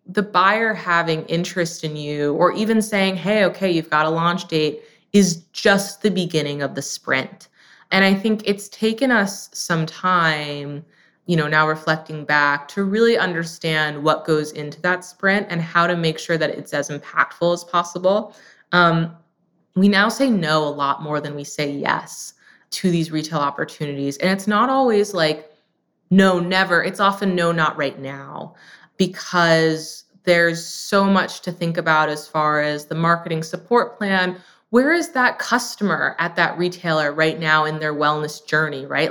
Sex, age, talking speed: female, 20-39, 170 wpm